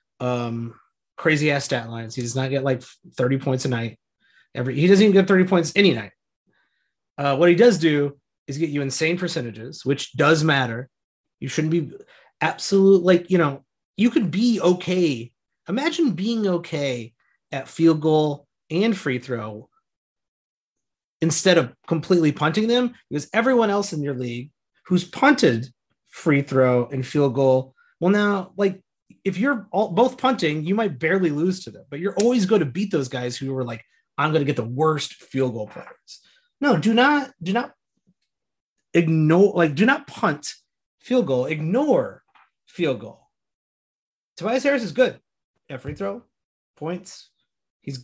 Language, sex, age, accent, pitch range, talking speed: English, male, 30-49, American, 135-195 Hz, 160 wpm